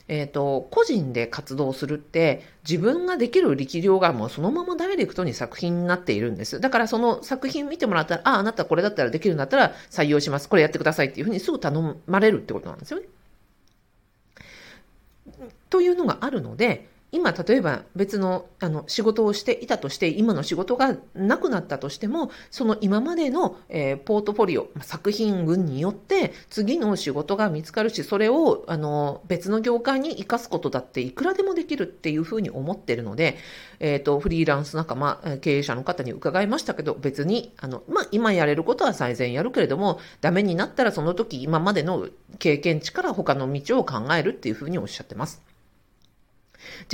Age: 40-59